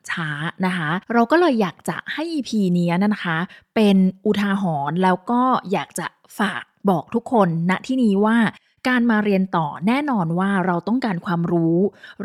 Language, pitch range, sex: Thai, 180-230 Hz, female